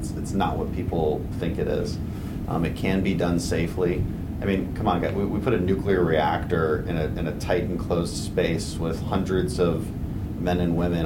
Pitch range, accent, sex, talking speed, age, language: 80-95 Hz, American, male, 195 wpm, 30-49, English